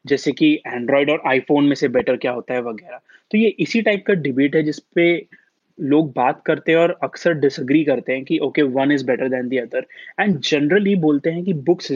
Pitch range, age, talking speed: 140-195 Hz, 20-39, 170 wpm